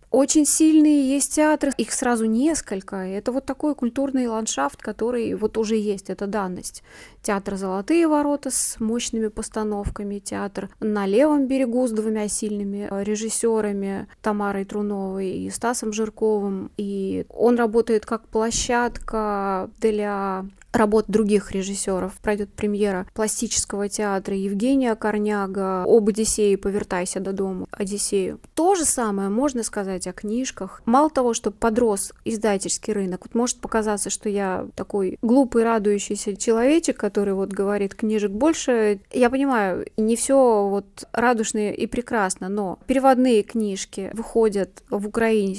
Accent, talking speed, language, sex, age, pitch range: native, 130 wpm, Russian, female, 20-39, 195-235 Hz